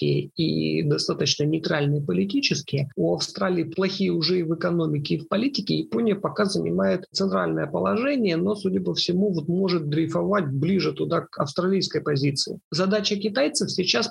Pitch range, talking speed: 155-195 Hz, 145 wpm